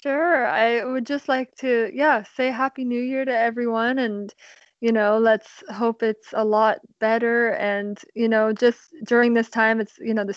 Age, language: 20-39, English